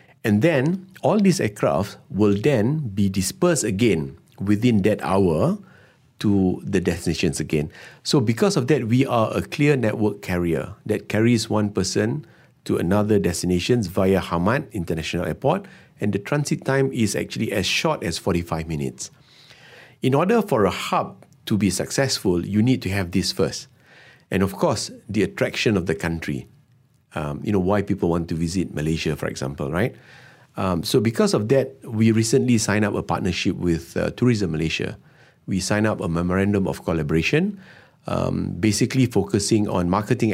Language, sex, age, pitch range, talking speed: English, male, 50-69, 90-130 Hz, 165 wpm